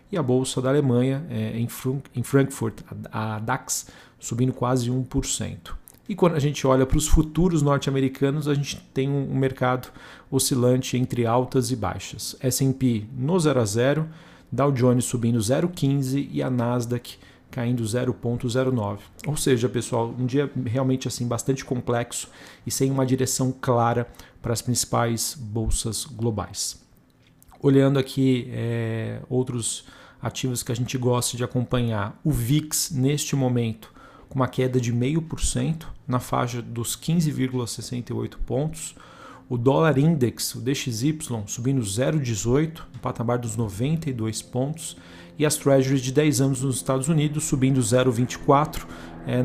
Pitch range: 120-140 Hz